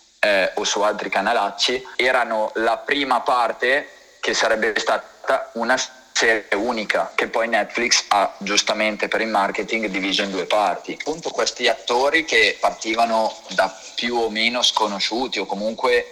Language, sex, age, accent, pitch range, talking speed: Italian, male, 20-39, native, 100-120 Hz, 145 wpm